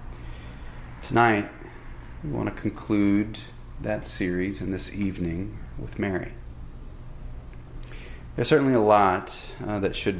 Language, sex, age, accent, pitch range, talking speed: English, male, 30-49, American, 85-95 Hz, 110 wpm